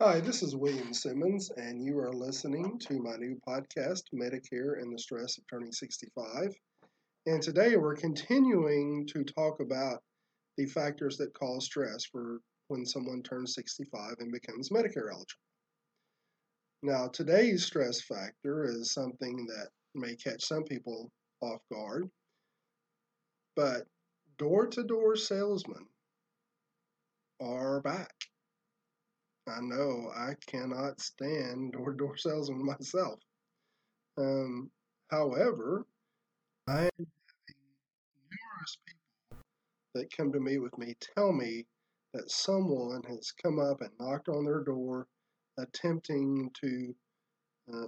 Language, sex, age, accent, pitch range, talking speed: English, male, 40-59, American, 125-160 Hz, 120 wpm